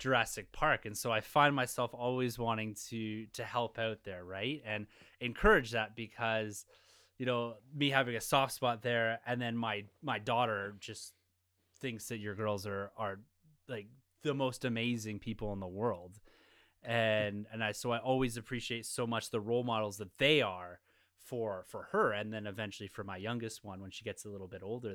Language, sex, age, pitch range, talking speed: English, male, 20-39, 105-125 Hz, 190 wpm